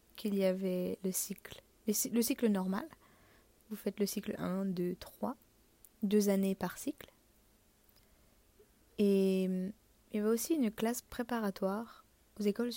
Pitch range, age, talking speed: 195-215 Hz, 20-39, 135 wpm